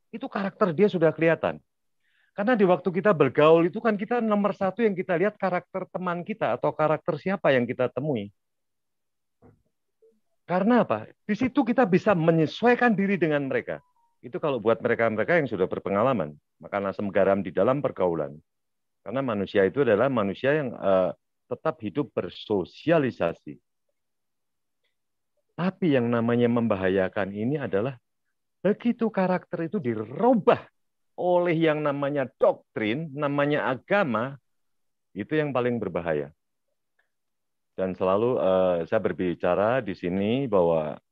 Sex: male